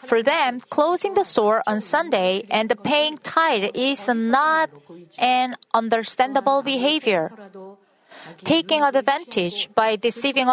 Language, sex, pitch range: Korean, female, 200-270 Hz